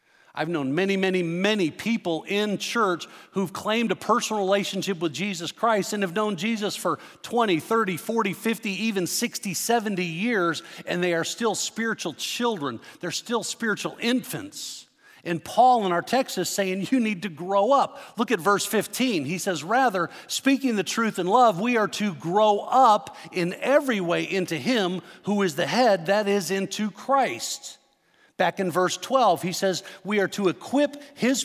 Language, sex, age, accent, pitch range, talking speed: English, male, 50-69, American, 170-225 Hz, 175 wpm